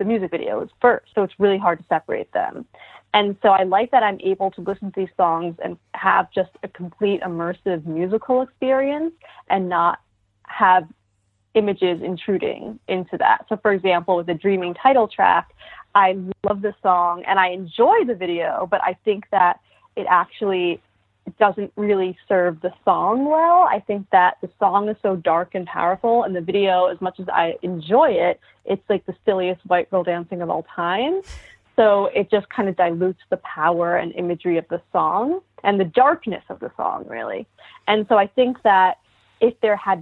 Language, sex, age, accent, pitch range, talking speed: English, female, 20-39, American, 175-215 Hz, 190 wpm